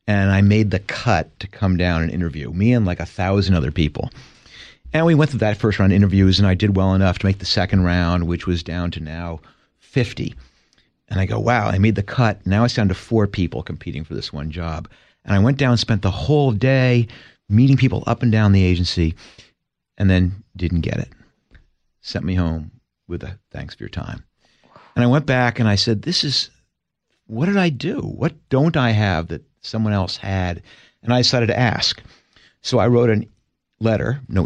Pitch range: 90-120 Hz